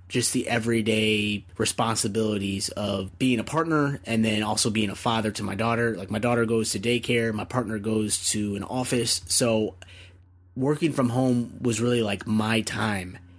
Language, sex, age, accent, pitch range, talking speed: English, male, 20-39, American, 100-115 Hz, 170 wpm